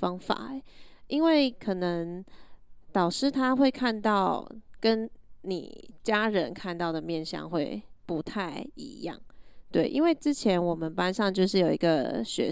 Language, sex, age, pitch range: Chinese, female, 20-39, 175-225 Hz